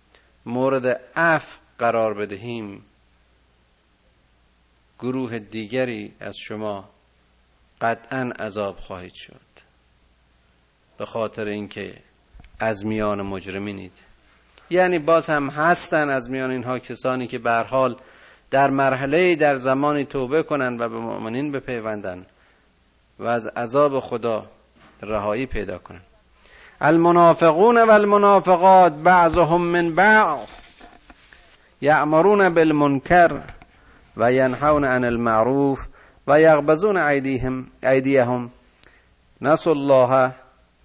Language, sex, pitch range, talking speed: Persian, male, 105-155 Hz, 90 wpm